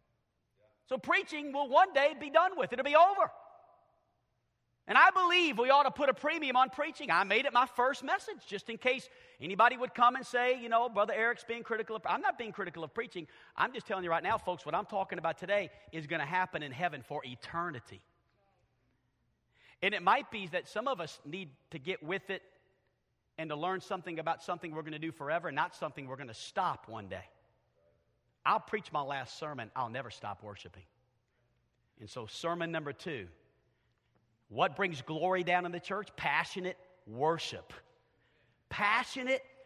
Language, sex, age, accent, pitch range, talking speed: English, male, 40-59, American, 160-265 Hz, 190 wpm